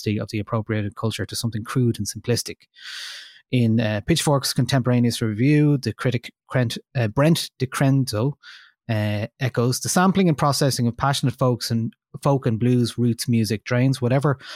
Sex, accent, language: male, Irish, English